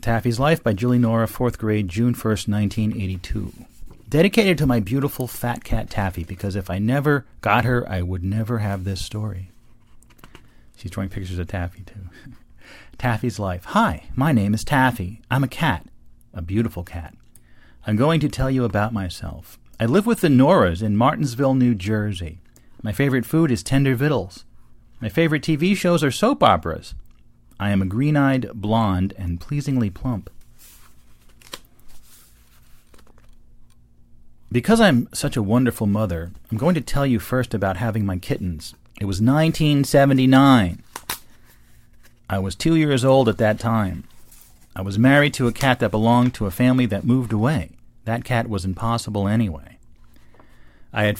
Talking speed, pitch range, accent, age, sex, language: 155 wpm, 100-130 Hz, American, 40-59, male, English